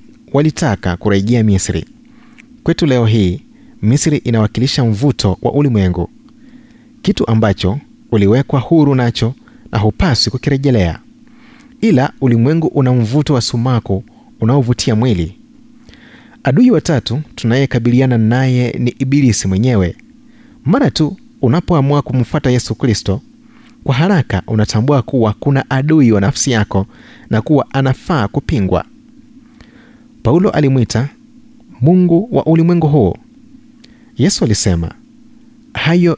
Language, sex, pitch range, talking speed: Swahili, male, 110-175 Hz, 105 wpm